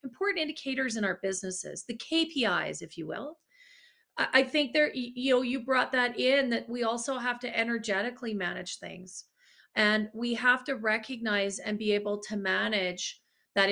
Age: 30-49